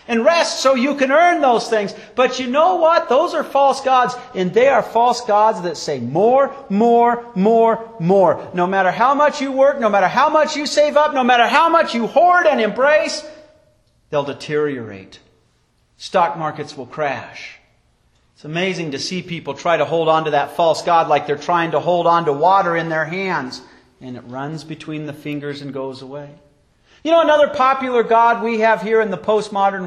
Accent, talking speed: American, 195 wpm